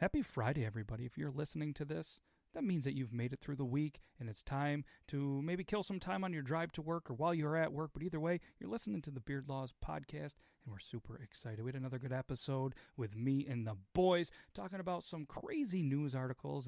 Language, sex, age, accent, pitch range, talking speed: English, male, 40-59, American, 125-180 Hz, 235 wpm